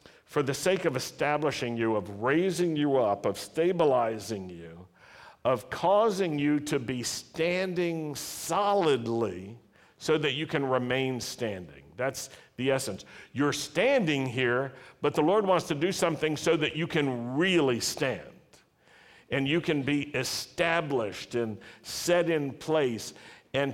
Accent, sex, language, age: American, male, English, 60-79